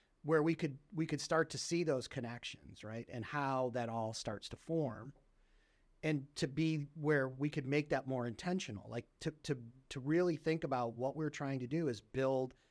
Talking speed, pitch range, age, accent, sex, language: 200 wpm, 120-150 Hz, 30-49, American, male, English